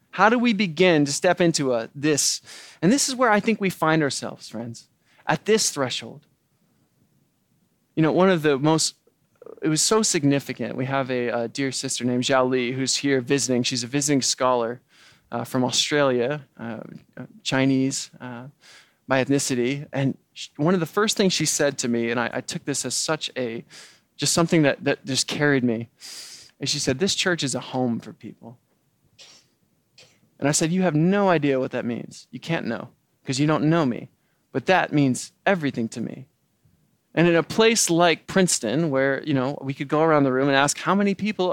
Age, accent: 20-39, American